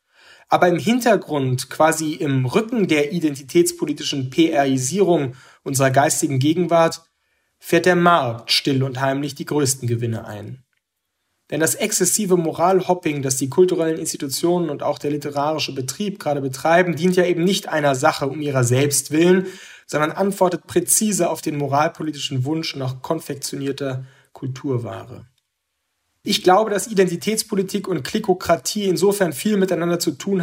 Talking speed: 135 wpm